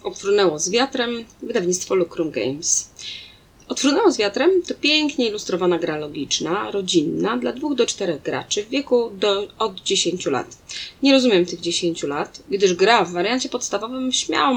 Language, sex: Polish, female